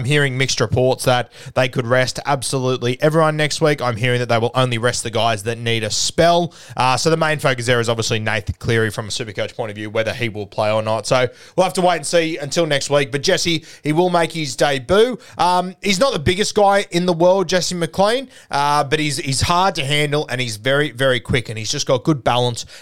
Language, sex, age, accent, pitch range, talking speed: English, male, 20-39, Australian, 120-155 Hz, 245 wpm